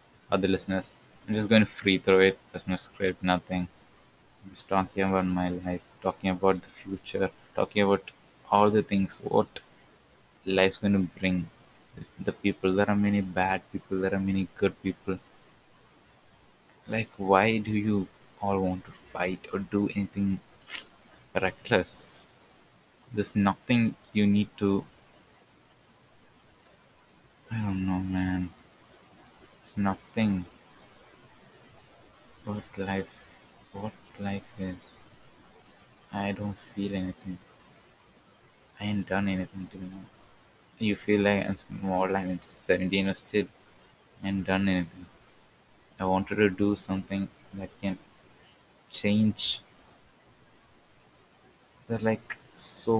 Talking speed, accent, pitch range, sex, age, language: 120 wpm, Indian, 95-100 Hz, male, 20-39, English